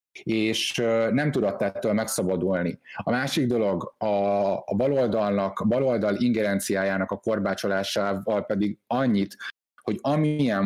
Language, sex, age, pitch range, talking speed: Hungarian, male, 30-49, 95-115 Hz, 105 wpm